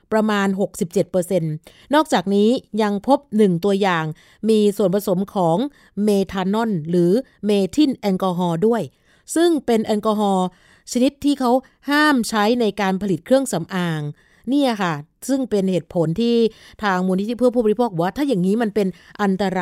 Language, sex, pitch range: Thai, female, 185-230 Hz